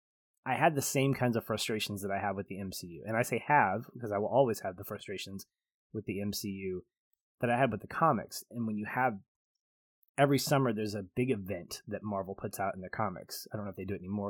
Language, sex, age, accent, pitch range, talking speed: English, male, 20-39, American, 100-130 Hz, 245 wpm